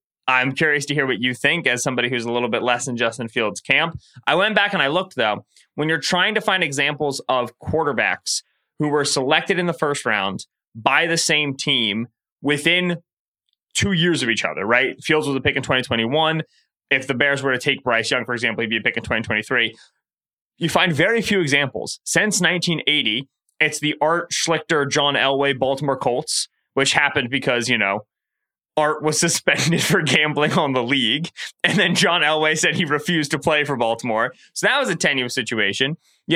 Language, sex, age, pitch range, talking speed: English, male, 20-39, 125-170 Hz, 195 wpm